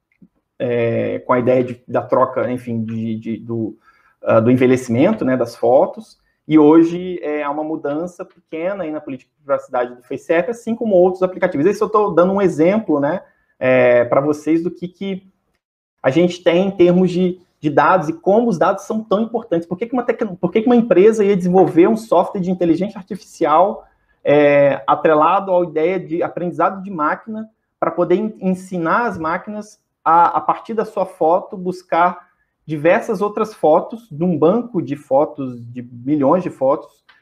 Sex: male